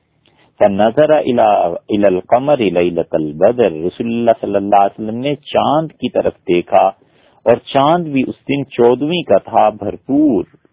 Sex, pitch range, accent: male, 100-150 Hz, Indian